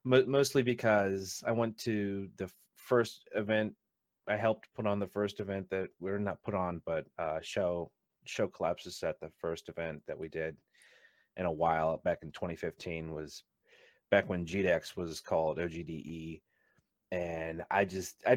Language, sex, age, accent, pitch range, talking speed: English, male, 30-49, American, 95-115 Hz, 165 wpm